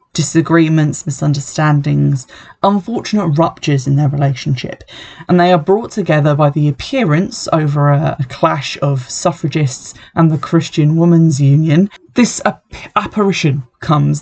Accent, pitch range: British, 140-170 Hz